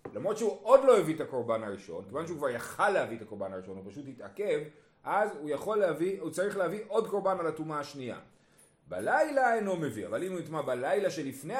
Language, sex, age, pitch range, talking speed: Hebrew, male, 30-49, 130-200 Hz, 205 wpm